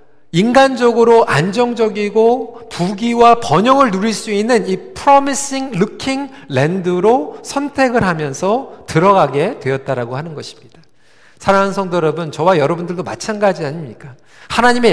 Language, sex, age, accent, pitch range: Korean, male, 40-59, native, 170-245 Hz